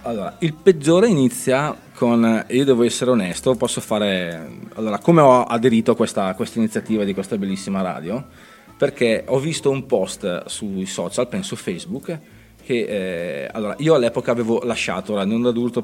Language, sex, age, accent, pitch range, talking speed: Italian, male, 30-49, native, 95-125 Hz, 170 wpm